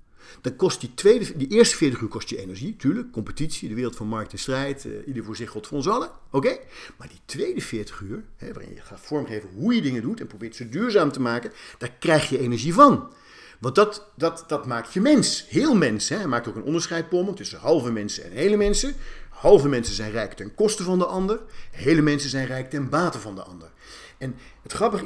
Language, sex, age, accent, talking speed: Dutch, male, 50-69, Dutch, 230 wpm